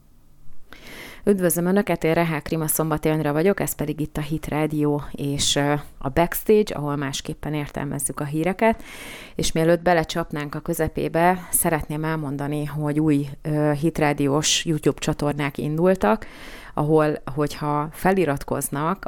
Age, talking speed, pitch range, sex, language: 30-49, 115 wpm, 145-160 Hz, female, Hungarian